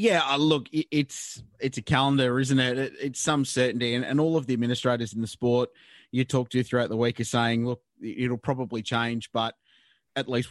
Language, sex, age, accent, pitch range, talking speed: English, male, 20-39, Australian, 115-140 Hz, 200 wpm